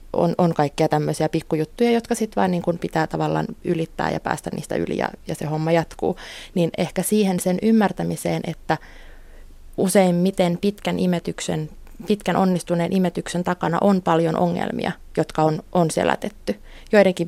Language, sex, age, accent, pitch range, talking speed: Finnish, female, 20-39, native, 165-195 Hz, 155 wpm